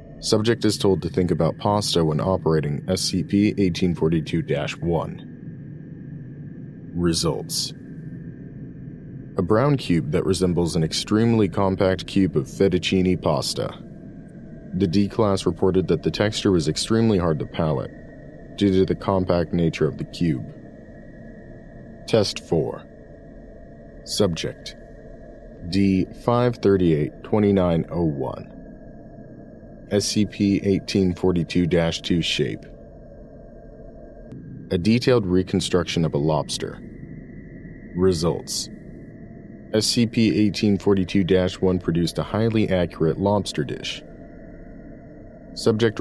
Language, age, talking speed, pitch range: English, 40-59, 85 wpm, 85-110 Hz